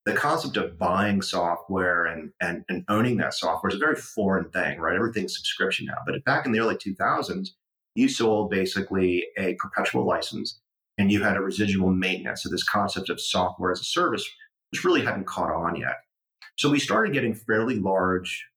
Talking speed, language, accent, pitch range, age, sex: 185 wpm, English, American, 90-115 Hz, 30-49, male